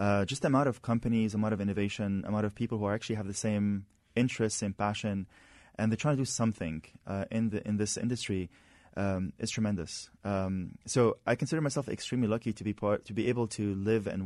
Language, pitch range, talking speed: English, 100-120 Hz, 225 wpm